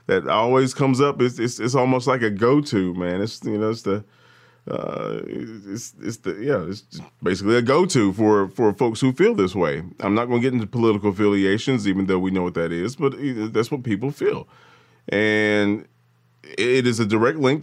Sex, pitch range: male, 105-130 Hz